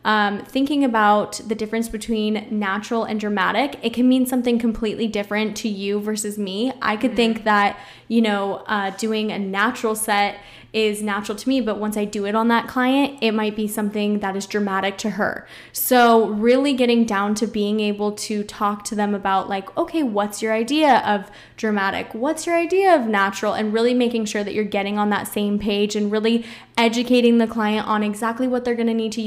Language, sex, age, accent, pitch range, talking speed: English, female, 10-29, American, 205-230 Hz, 205 wpm